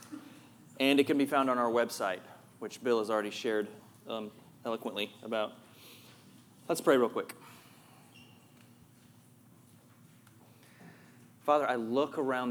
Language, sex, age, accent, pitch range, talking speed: English, male, 30-49, American, 115-150 Hz, 115 wpm